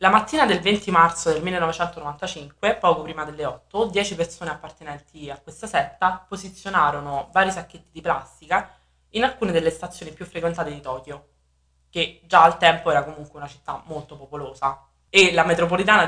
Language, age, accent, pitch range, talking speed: Italian, 20-39, native, 145-180 Hz, 160 wpm